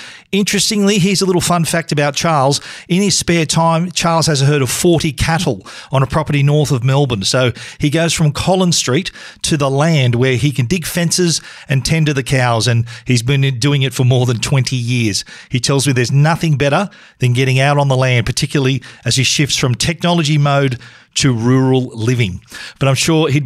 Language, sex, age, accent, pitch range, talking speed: English, male, 40-59, Australian, 125-155 Hz, 205 wpm